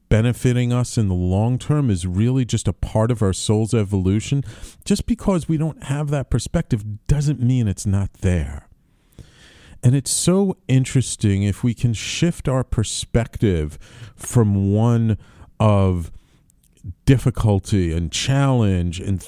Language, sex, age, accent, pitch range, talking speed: English, male, 40-59, American, 95-130 Hz, 135 wpm